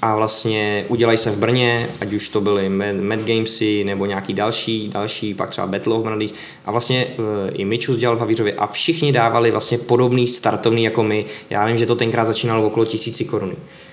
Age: 20-39